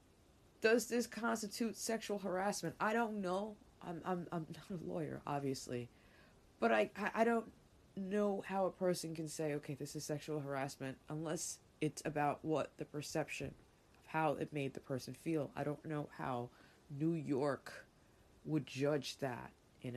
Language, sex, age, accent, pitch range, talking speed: English, female, 20-39, American, 125-175 Hz, 160 wpm